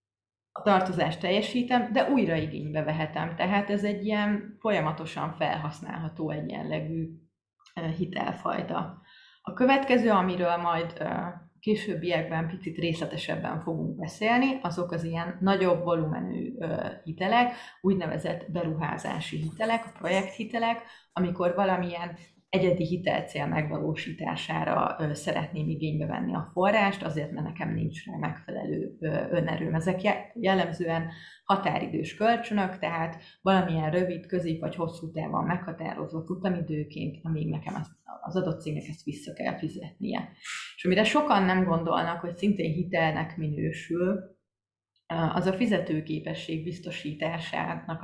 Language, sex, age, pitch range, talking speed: Hungarian, female, 30-49, 160-190 Hz, 110 wpm